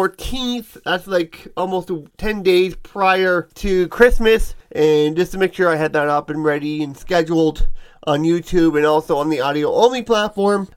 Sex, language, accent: male, English, American